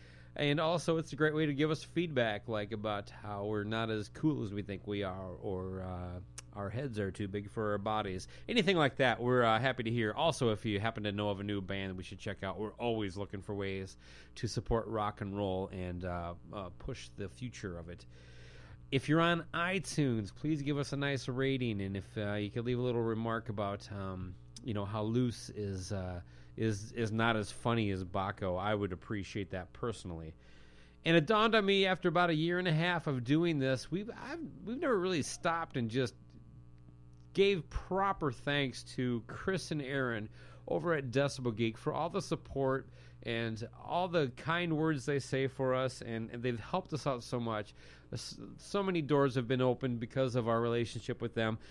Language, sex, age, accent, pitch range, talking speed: English, male, 30-49, American, 100-145 Hz, 205 wpm